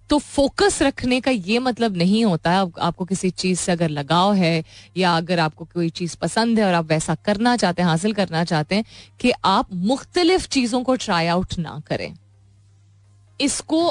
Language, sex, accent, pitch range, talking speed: Hindi, female, native, 175-255 Hz, 190 wpm